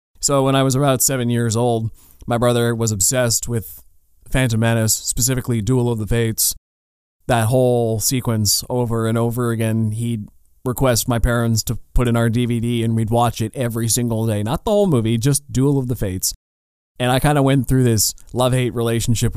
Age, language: 20-39, English